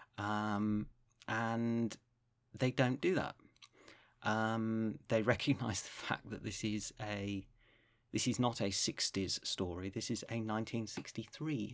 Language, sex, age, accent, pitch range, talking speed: English, male, 30-49, British, 105-120 Hz, 130 wpm